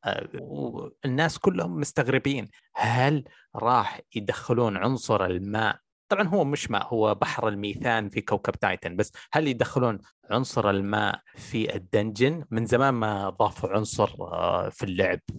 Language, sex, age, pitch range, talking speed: Arabic, male, 30-49, 105-135 Hz, 125 wpm